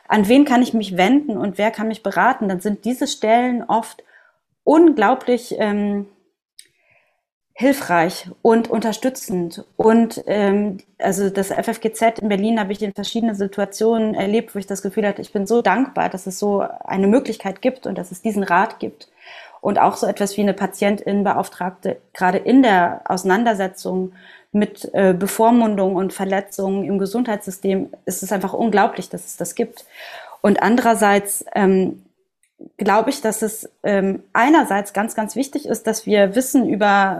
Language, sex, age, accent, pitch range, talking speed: German, female, 30-49, German, 200-230 Hz, 155 wpm